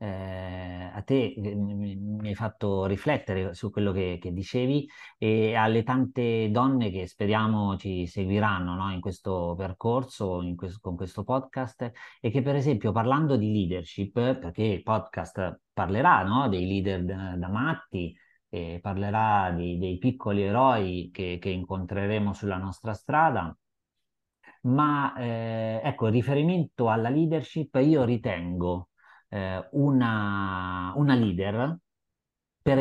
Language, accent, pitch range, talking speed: Italian, native, 95-130 Hz, 125 wpm